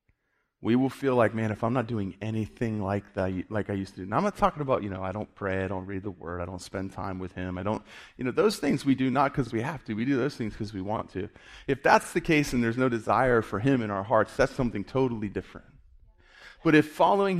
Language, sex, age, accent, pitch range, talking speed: English, male, 30-49, American, 110-150 Hz, 270 wpm